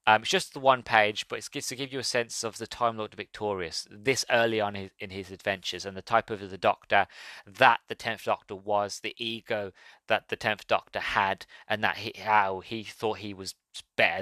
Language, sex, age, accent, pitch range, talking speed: English, male, 30-49, British, 100-125 Hz, 220 wpm